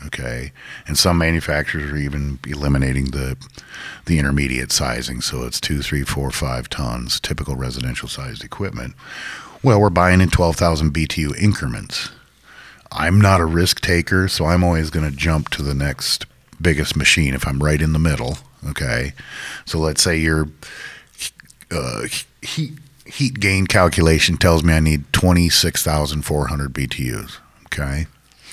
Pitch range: 70-85 Hz